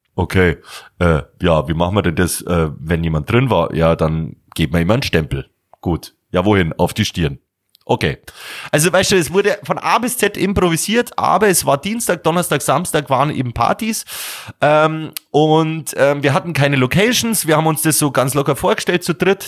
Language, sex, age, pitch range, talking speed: German, male, 30-49, 110-160 Hz, 195 wpm